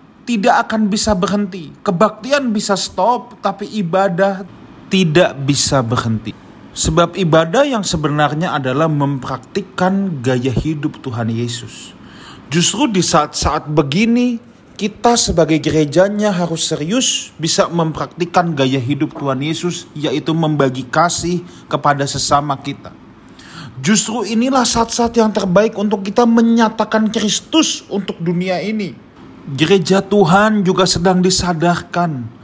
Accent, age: native, 30-49